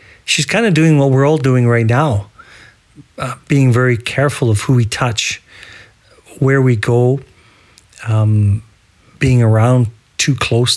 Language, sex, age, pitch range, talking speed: English, male, 50-69, 105-135 Hz, 145 wpm